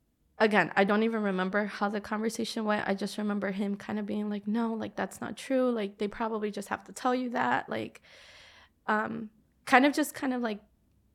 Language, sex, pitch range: English, female, 195-220 Hz